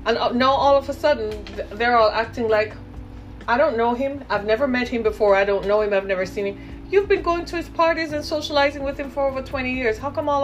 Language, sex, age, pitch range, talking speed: English, female, 30-49, 210-285 Hz, 255 wpm